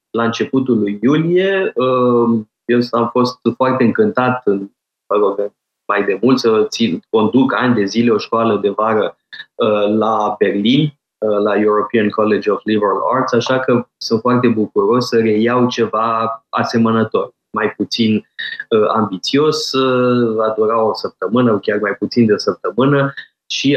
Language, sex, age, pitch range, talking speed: Romanian, male, 20-39, 110-125 Hz, 140 wpm